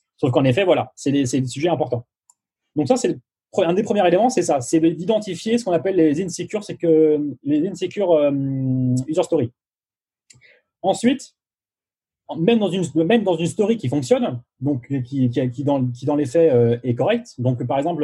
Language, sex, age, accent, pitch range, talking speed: French, male, 30-49, French, 130-175 Hz, 195 wpm